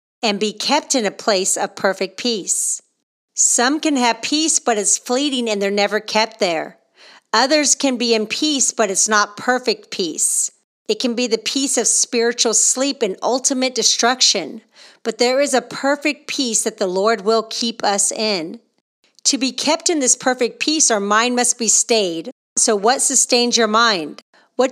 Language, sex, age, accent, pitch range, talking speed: English, female, 40-59, American, 220-255 Hz, 175 wpm